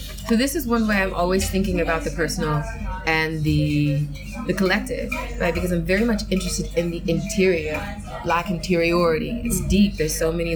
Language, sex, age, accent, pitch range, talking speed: English, female, 20-39, American, 155-190 Hz, 175 wpm